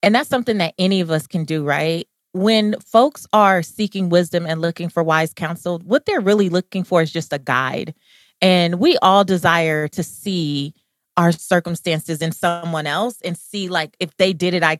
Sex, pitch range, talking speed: female, 165-205 Hz, 195 wpm